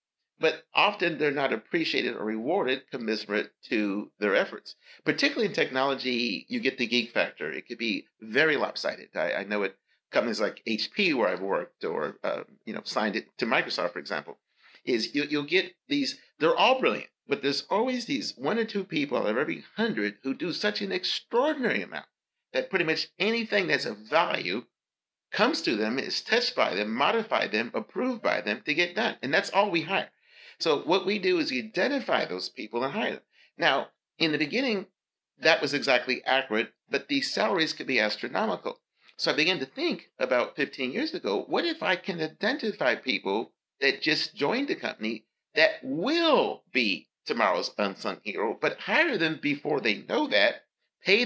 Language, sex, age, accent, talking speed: English, male, 50-69, American, 185 wpm